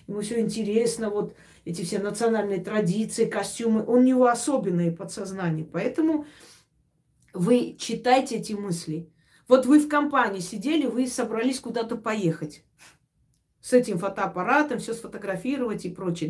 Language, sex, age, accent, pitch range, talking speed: Russian, female, 40-59, native, 175-250 Hz, 130 wpm